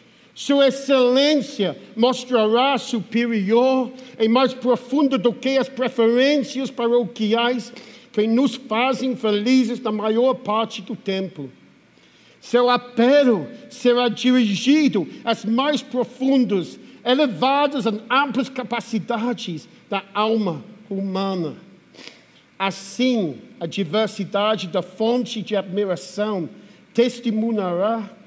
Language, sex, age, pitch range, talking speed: Portuguese, male, 50-69, 195-245 Hz, 90 wpm